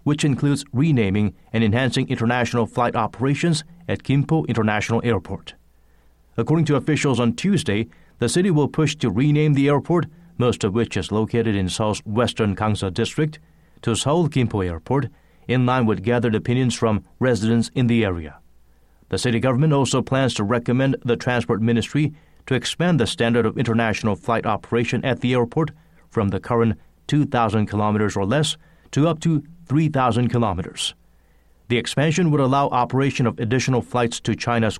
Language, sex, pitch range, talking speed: English, male, 110-145 Hz, 160 wpm